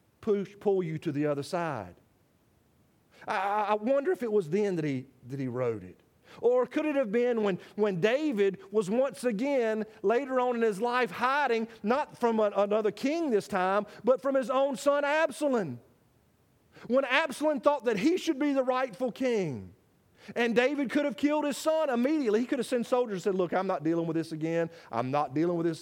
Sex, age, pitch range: male, 40-59, 165-240 Hz